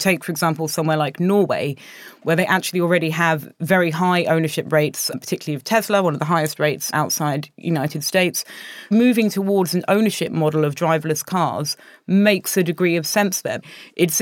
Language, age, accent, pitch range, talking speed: English, 30-49, British, 160-190 Hz, 175 wpm